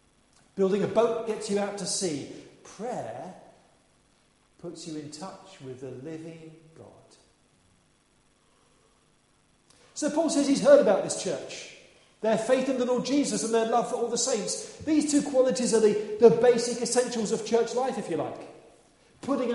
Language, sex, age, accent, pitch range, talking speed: English, male, 40-59, British, 195-250 Hz, 165 wpm